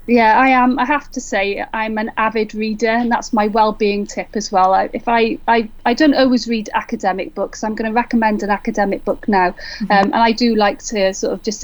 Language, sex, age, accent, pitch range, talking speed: English, female, 40-59, British, 210-265 Hz, 215 wpm